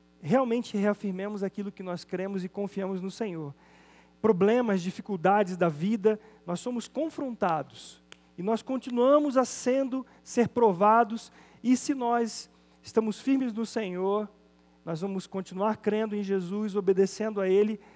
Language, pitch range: Portuguese, 185-230 Hz